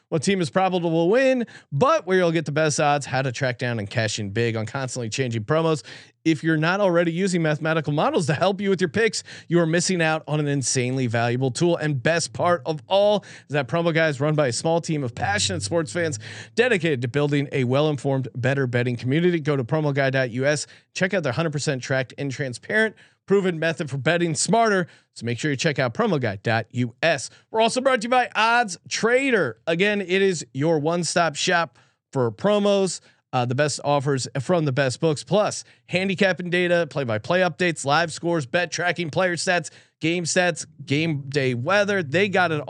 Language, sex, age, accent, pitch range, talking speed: English, male, 30-49, American, 135-175 Hz, 200 wpm